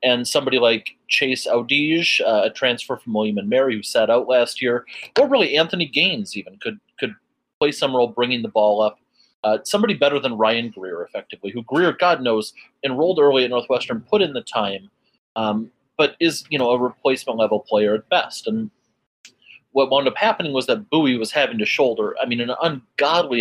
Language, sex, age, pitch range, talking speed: English, male, 30-49, 110-170 Hz, 195 wpm